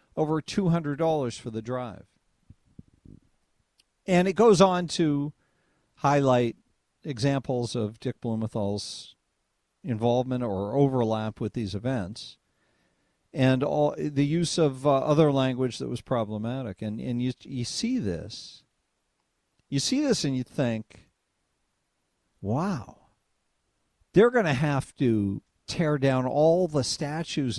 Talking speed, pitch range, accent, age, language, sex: 120 wpm, 115-165 Hz, American, 50-69, English, male